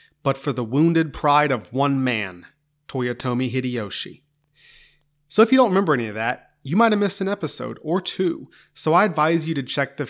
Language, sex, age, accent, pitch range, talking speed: English, male, 30-49, American, 130-165 Hz, 195 wpm